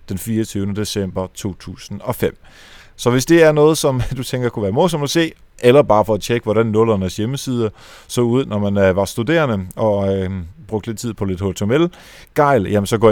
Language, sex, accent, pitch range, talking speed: Danish, male, native, 100-130 Hz, 195 wpm